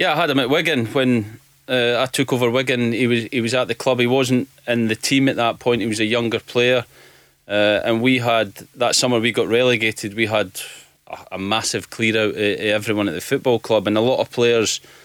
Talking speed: 235 wpm